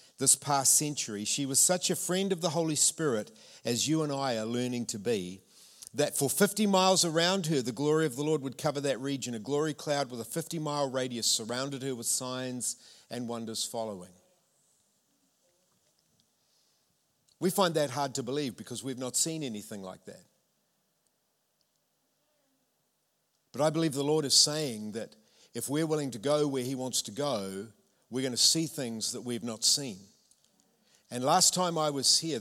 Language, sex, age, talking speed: English, male, 50-69, 175 wpm